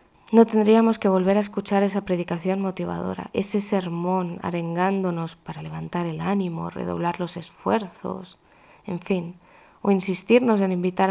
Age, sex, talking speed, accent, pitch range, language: 20-39, female, 135 wpm, Spanish, 180-210 Hz, Spanish